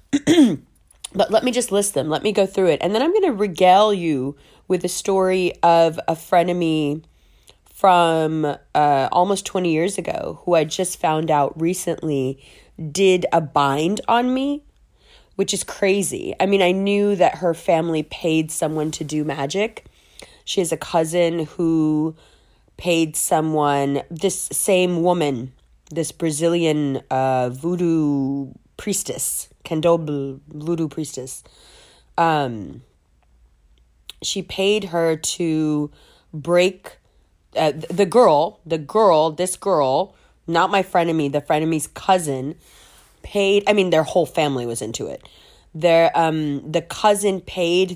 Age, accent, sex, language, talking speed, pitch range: 20-39, American, female, English, 140 wpm, 155-190 Hz